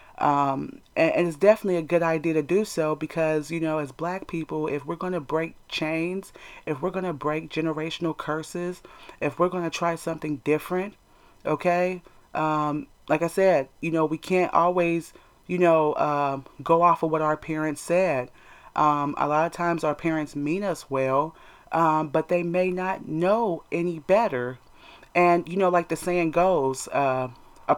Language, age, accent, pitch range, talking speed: English, 30-49, American, 155-180 Hz, 180 wpm